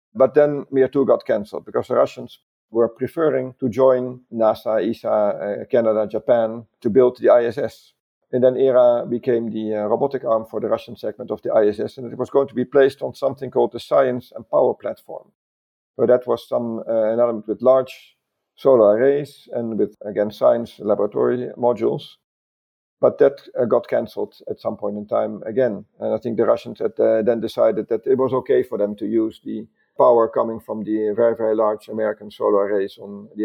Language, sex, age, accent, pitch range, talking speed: English, male, 50-69, Belgian, 110-130 Hz, 195 wpm